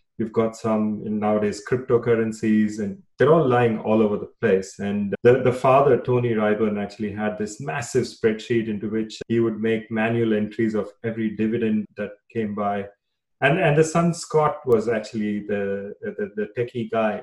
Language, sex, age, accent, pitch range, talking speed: English, male, 30-49, Indian, 105-120 Hz, 170 wpm